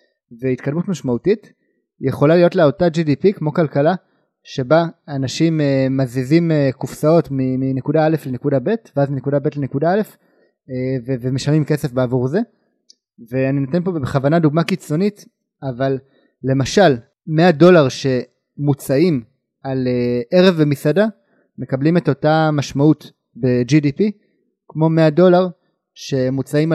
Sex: male